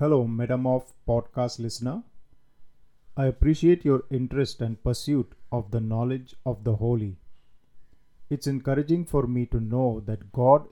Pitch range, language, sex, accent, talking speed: 115-135 Hz, Hindi, male, native, 135 wpm